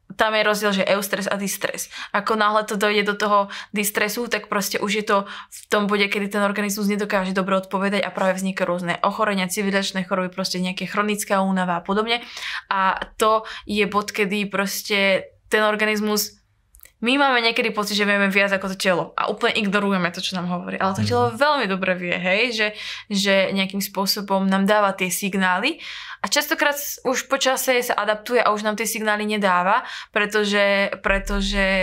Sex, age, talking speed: female, 20-39, 180 wpm